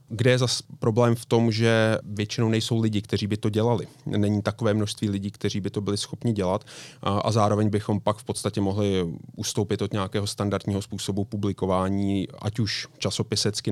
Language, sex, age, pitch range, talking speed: Czech, male, 30-49, 100-115 Hz, 175 wpm